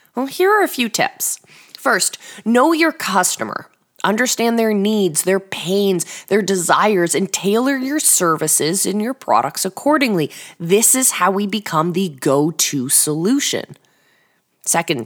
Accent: American